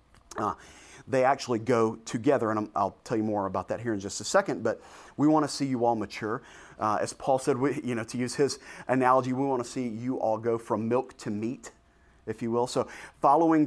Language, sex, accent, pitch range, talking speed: English, male, American, 105-140 Hz, 225 wpm